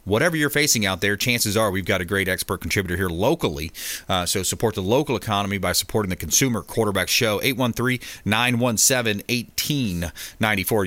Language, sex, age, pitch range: English, male, 30-49, 95-120 Hz